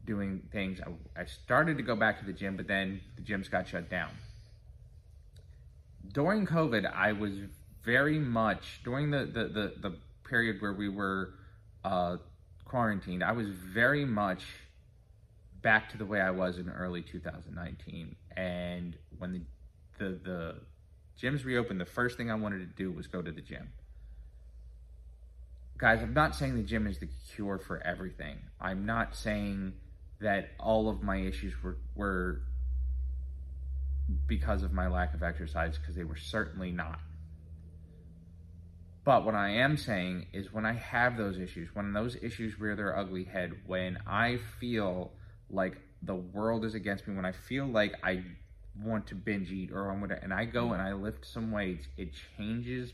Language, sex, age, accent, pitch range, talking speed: English, male, 20-39, American, 85-110 Hz, 170 wpm